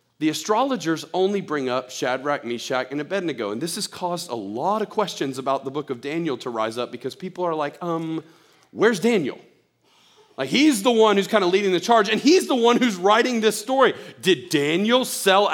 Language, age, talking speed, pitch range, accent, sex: English, 40-59, 205 wpm, 145-205 Hz, American, male